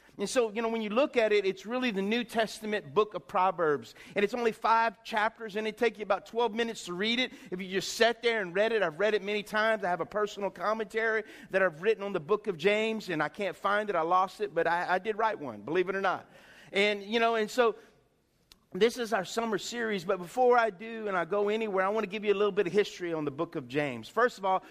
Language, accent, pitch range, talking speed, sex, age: English, American, 180-230 Hz, 270 wpm, male, 50-69